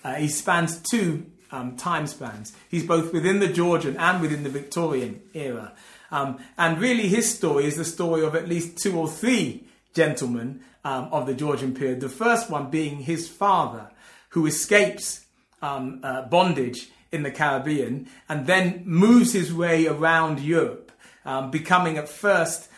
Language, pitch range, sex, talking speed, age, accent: English, 150-185 Hz, male, 165 wpm, 30-49, British